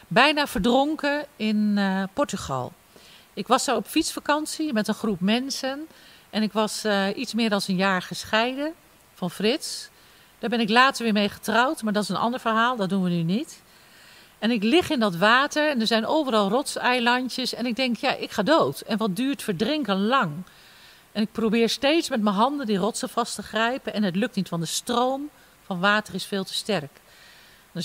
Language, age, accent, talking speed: Dutch, 50-69, Dutch, 200 wpm